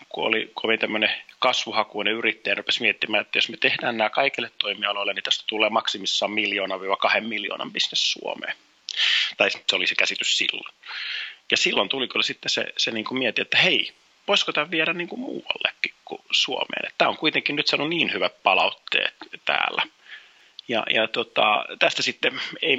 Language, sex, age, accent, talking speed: Finnish, male, 30-49, native, 170 wpm